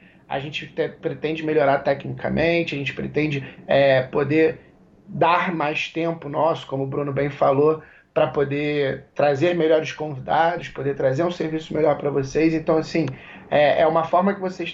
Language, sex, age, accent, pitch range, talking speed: Portuguese, male, 20-39, Brazilian, 145-175 Hz, 165 wpm